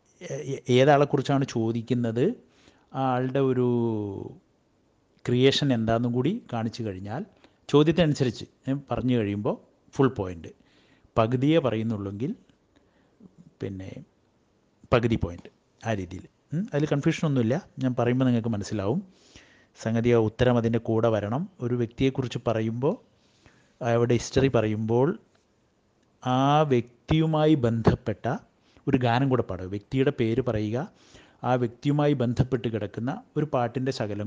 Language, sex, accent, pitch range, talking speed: Malayalam, male, native, 110-135 Hz, 100 wpm